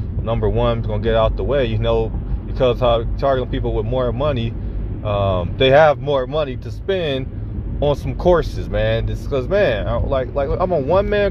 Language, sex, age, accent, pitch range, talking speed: English, male, 30-49, American, 95-115 Hz, 195 wpm